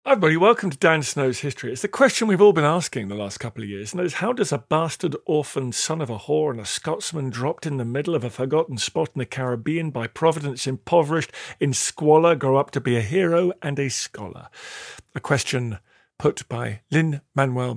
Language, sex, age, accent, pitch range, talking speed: English, male, 40-59, British, 125-170 Hz, 215 wpm